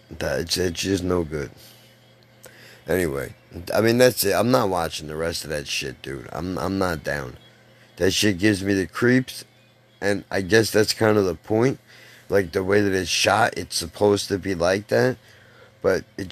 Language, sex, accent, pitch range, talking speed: English, male, American, 90-110 Hz, 185 wpm